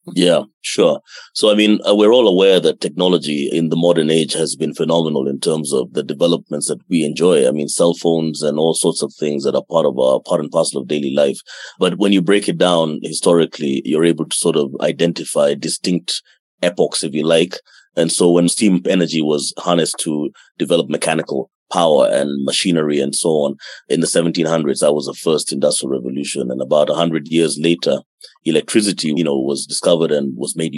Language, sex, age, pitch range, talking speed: English, male, 30-49, 75-85 Hz, 200 wpm